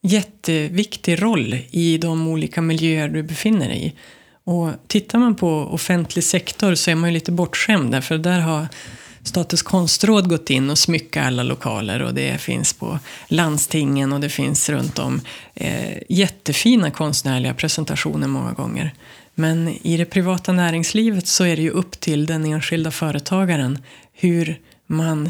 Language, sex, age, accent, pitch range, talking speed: Swedish, female, 30-49, native, 150-180 Hz, 150 wpm